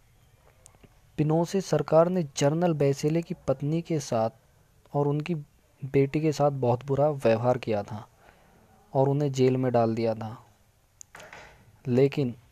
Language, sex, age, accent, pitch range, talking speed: Hindi, male, 20-39, native, 115-145 Hz, 135 wpm